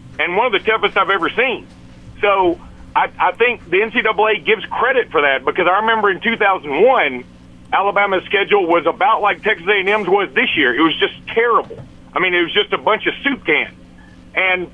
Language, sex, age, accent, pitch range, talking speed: English, male, 50-69, American, 185-230 Hz, 195 wpm